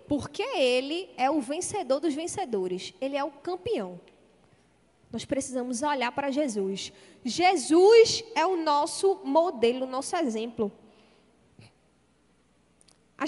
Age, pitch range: 10-29, 240-340 Hz